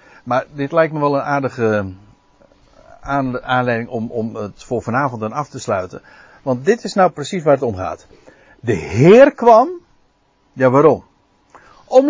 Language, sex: Dutch, male